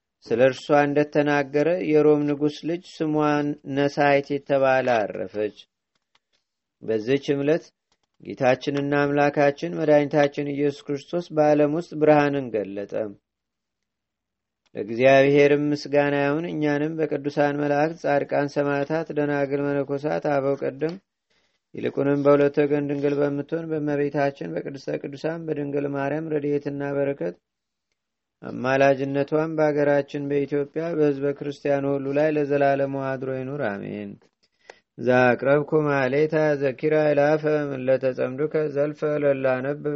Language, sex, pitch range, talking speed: Amharic, male, 140-150 Hz, 90 wpm